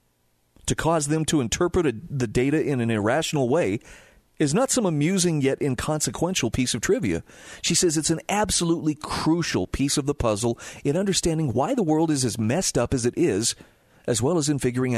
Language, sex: English, male